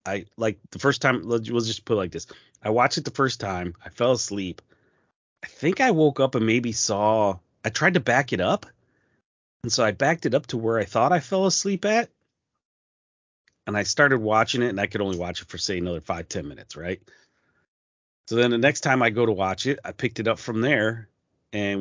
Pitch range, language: 105-140 Hz, English